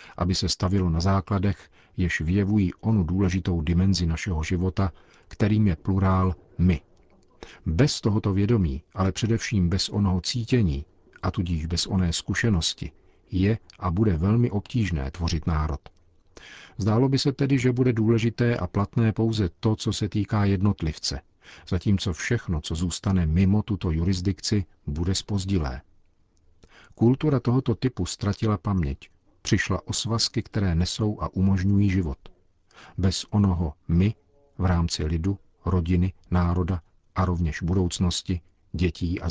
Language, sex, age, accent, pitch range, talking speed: Czech, male, 50-69, native, 85-105 Hz, 130 wpm